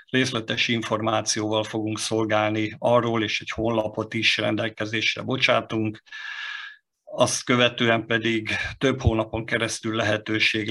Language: Hungarian